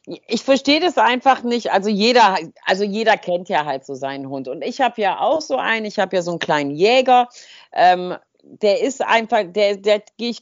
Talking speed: 205 wpm